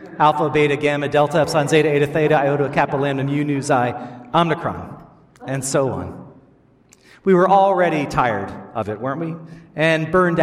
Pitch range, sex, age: 135-170 Hz, male, 40-59